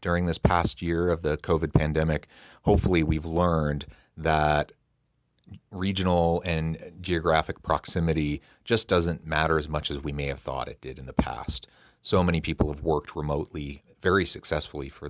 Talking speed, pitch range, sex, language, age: 160 wpm, 75-95 Hz, male, English, 30-49